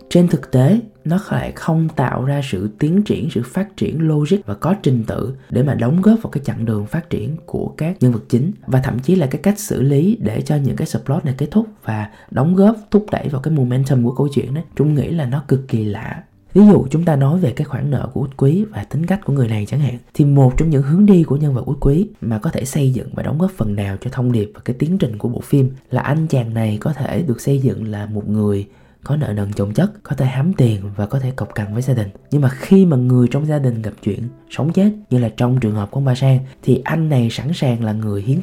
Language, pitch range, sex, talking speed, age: Vietnamese, 115-155 Hz, male, 280 wpm, 20-39